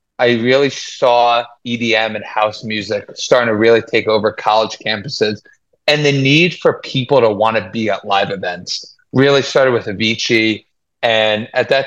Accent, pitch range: American, 110-130 Hz